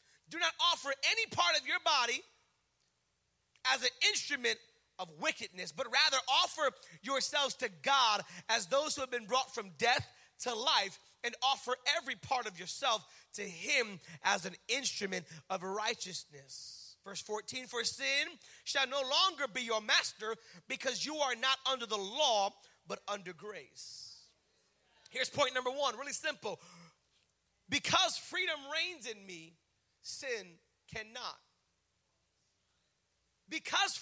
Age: 30-49